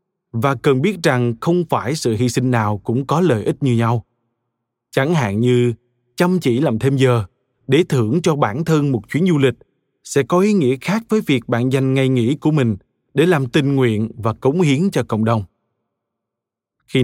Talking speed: 200 wpm